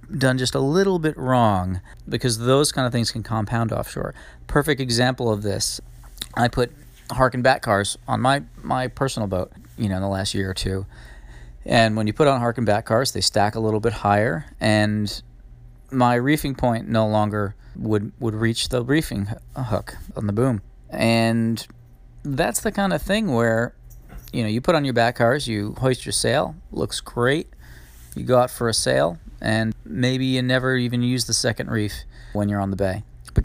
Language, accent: English, American